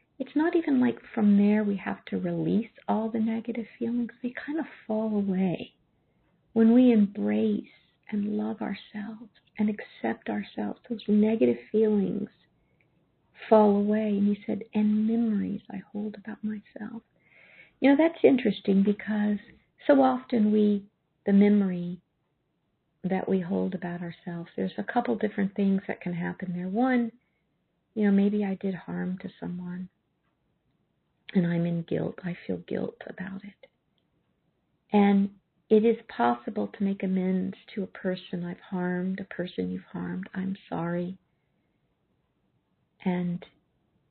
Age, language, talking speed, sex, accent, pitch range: 50-69, English, 140 wpm, female, American, 180-215 Hz